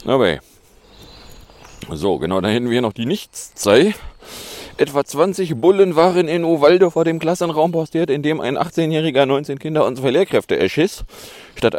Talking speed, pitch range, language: 150 wpm, 115-165 Hz, German